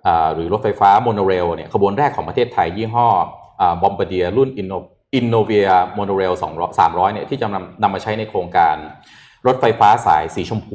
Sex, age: male, 20-39